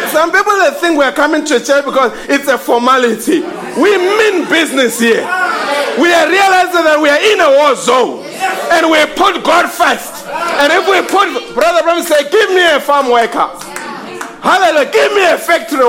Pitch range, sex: 285-370 Hz, male